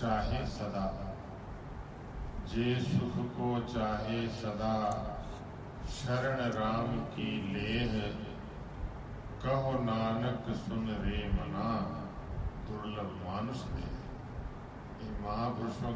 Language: Hindi